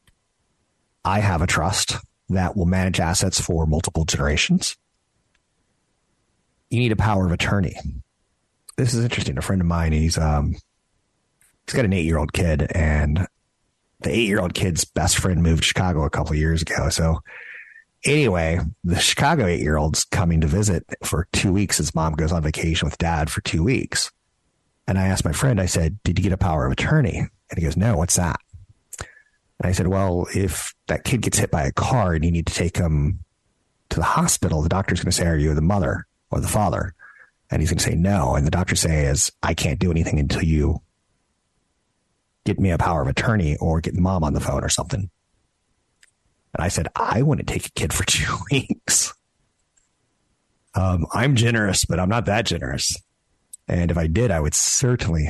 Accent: American